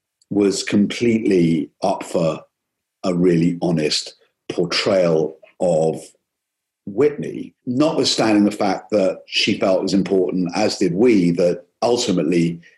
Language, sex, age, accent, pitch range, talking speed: English, male, 50-69, British, 90-130 Hz, 115 wpm